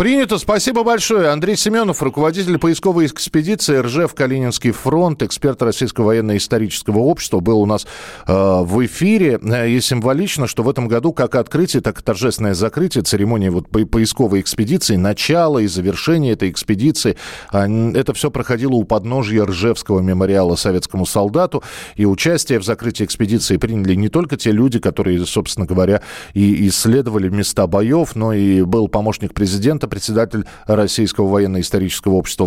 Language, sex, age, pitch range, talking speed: Russian, male, 40-59, 95-130 Hz, 140 wpm